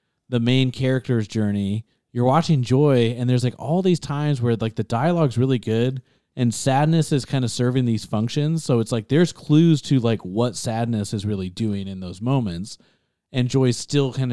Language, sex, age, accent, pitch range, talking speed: English, male, 30-49, American, 110-140 Hz, 195 wpm